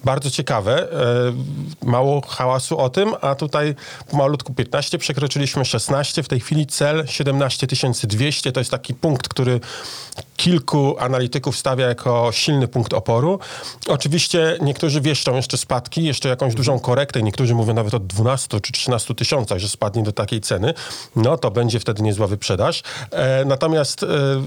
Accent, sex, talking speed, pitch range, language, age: native, male, 145 wpm, 120-140 Hz, Polish, 40-59